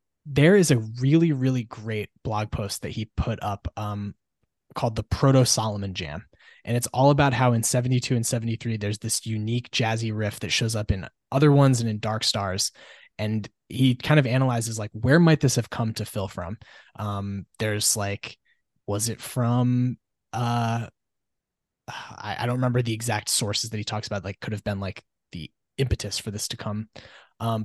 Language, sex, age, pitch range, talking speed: English, male, 20-39, 105-125 Hz, 185 wpm